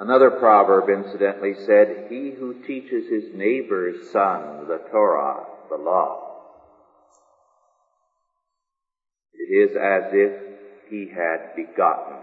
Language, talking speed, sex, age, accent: English, 105 wpm, male, 50-69, American